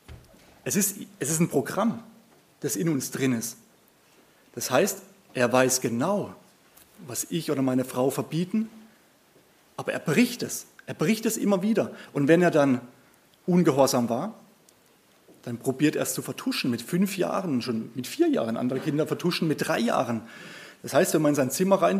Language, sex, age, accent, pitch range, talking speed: German, male, 30-49, German, 135-200 Hz, 175 wpm